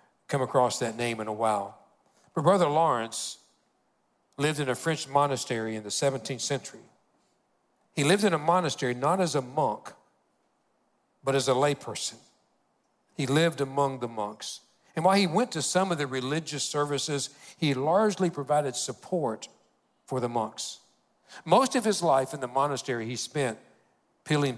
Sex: male